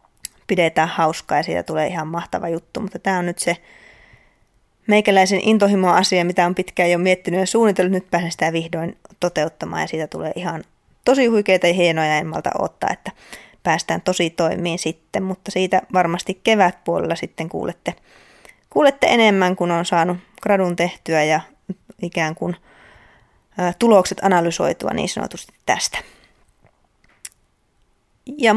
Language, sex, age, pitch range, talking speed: Finnish, female, 20-39, 175-215 Hz, 140 wpm